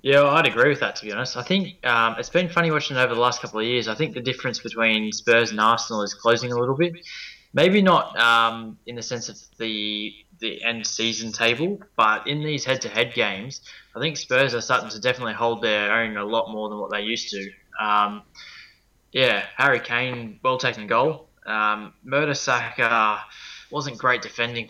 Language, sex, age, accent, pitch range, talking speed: English, male, 20-39, Australian, 105-120 Hz, 195 wpm